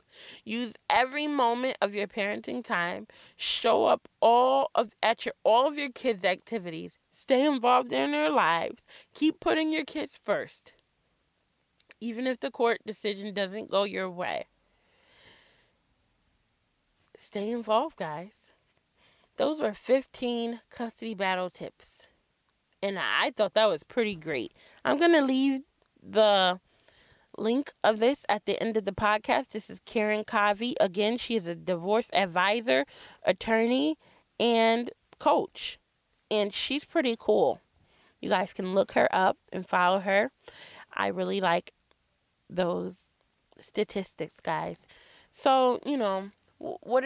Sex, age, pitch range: female, 20-39, 200-260 Hz